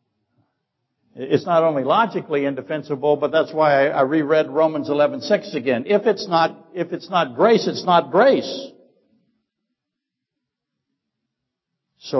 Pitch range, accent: 130-170 Hz, American